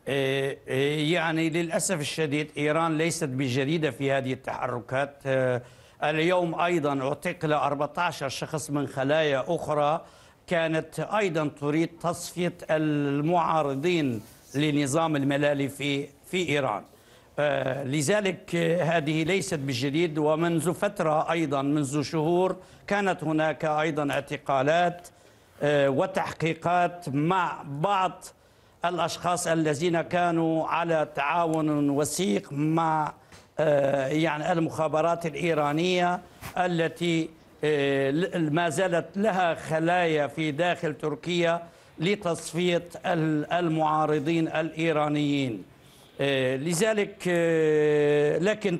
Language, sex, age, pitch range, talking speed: Arabic, male, 60-79, 145-175 Hz, 80 wpm